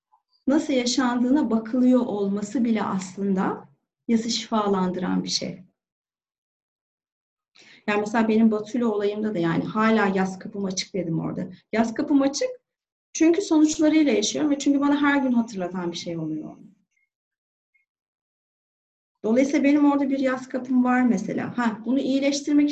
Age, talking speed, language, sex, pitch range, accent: 30-49, 130 wpm, Turkish, female, 210-300 Hz, native